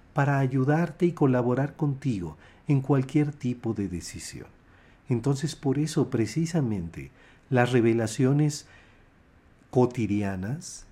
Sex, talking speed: male, 95 wpm